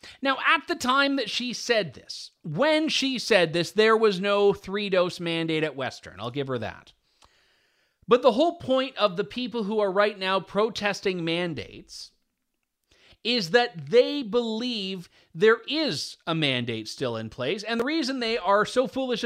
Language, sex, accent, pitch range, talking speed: English, male, American, 175-235 Hz, 170 wpm